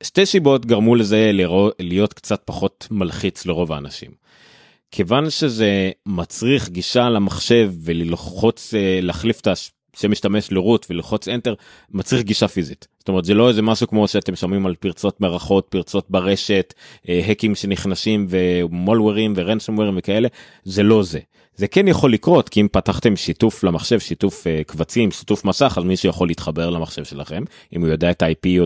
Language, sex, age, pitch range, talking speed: Hebrew, male, 30-49, 90-115 Hz, 155 wpm